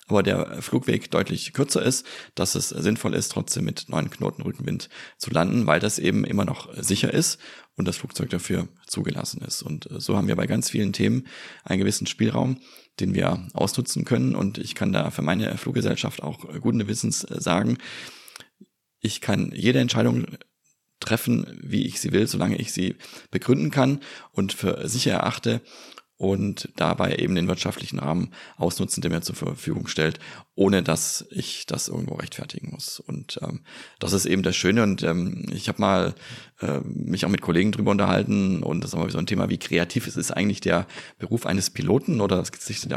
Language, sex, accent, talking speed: German, male, German, 185 wpm